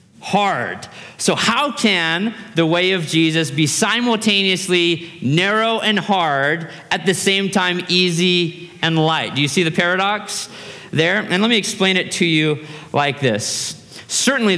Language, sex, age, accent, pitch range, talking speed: English, male, 30-49, American, 130-185 Hz, 150 wpm